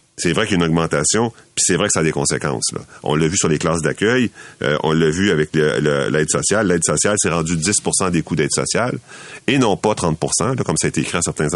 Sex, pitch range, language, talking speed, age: male, 80-100 Hz, French, 275 wpm, 40-59